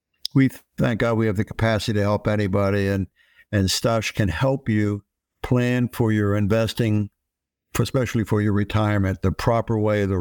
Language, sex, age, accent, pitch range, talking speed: English, male, 60-79, American, 100-130 Hz, 170 wpm